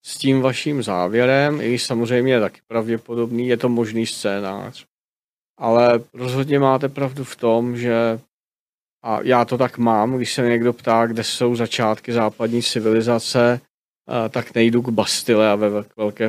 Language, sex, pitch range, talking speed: Czech, male, 110-125 Hz, 155 wpm